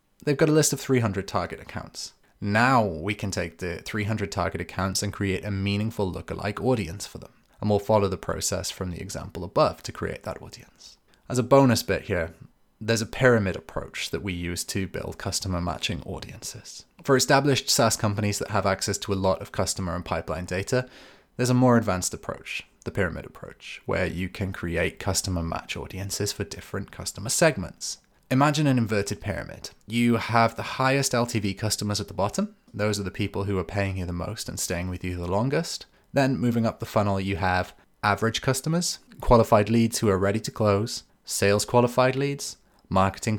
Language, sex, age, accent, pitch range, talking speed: English, male, 20-39, British, 95-120 Hz, 190 wpm